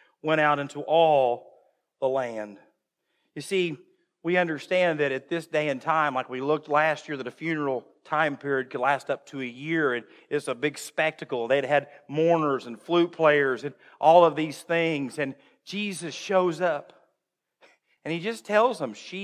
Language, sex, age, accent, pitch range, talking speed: English, male, 50-69, American, 140-180 Hz, 180 wpm